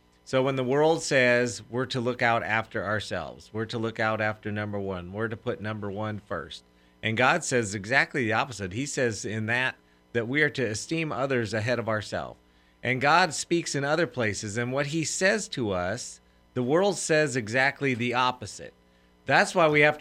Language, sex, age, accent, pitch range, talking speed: English, male, 40-59, American, 105-150 Hz, 195 wpm